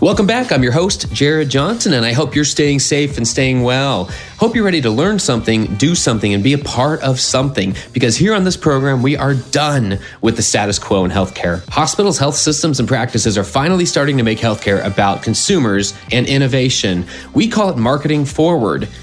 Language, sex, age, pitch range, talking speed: English, male, 30-49, 115-165 Hz, 200 wpm